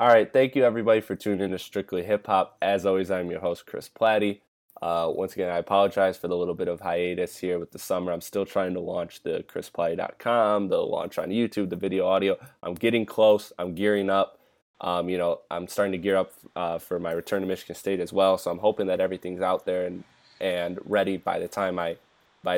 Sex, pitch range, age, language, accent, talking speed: male, 90-100 Hz, 20-39, English, American, 230 wpm